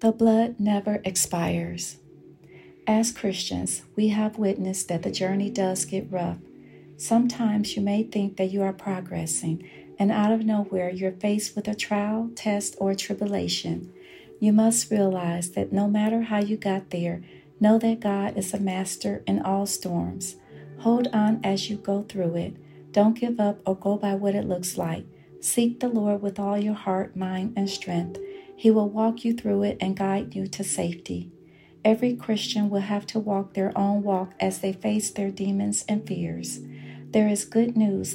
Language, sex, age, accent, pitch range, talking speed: English, female, 40-59, American, 190-215 Hz, 175 wpm